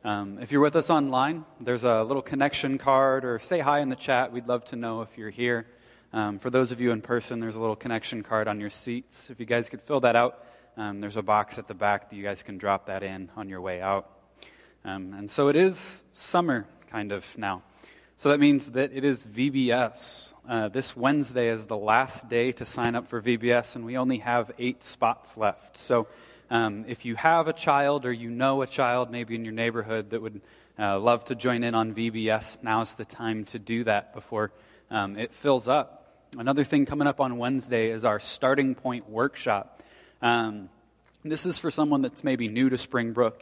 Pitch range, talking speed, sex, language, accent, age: 110-130 Hz, 215 wpm, male, English, American, 20-39